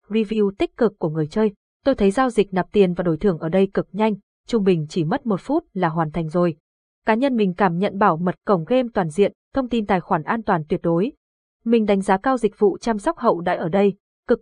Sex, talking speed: female, 255 wpm